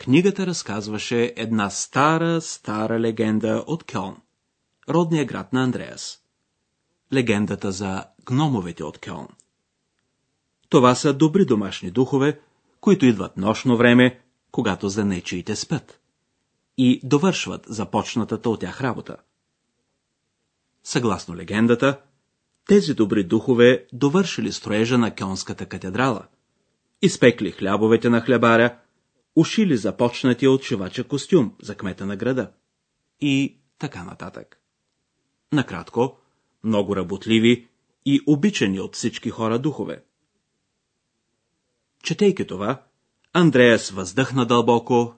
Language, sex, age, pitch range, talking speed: Bulgarian, male, 40-59, 105-140 Hz, 100 wpm